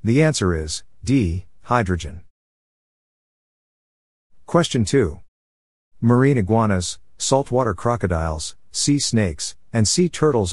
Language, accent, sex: English, American, male